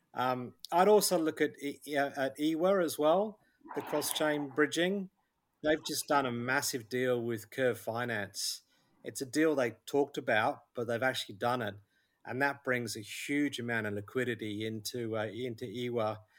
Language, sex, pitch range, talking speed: English, male, 120-150 Hz, 165 wpm